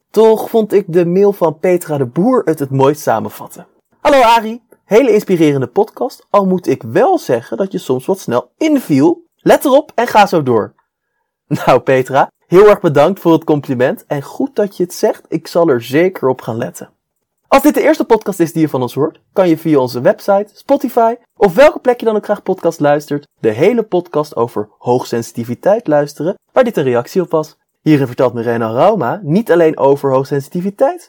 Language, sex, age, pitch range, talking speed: Dutch, male, 20-39, 145-230 Hz, 195 wpm